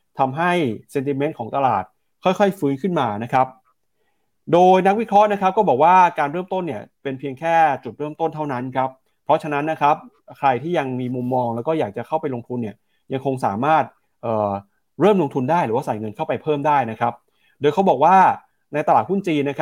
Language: Thai